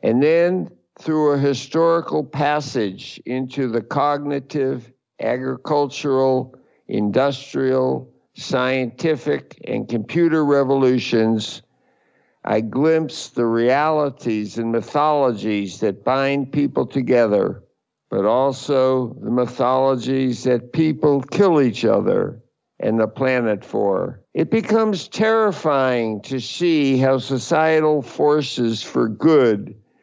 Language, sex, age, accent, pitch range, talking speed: English, male, 60-79, American, 120-150 Hz, 95 wpm